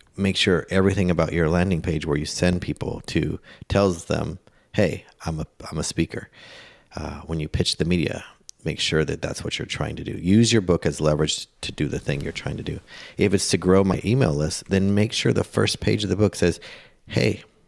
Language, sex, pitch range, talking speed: English, male, 80-95 Hz, 225 wpm